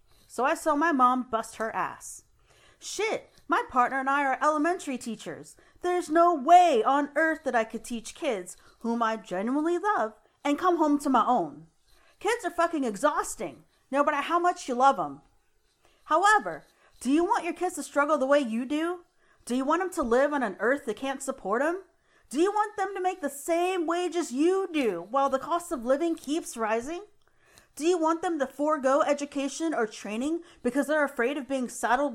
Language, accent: English, American